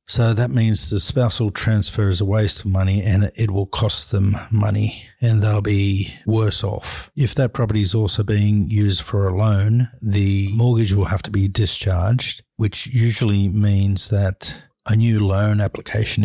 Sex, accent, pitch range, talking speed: male, Australian, 100-110 Hz, 175 wpm